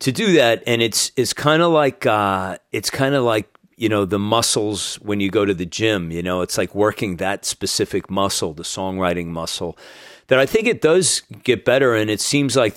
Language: English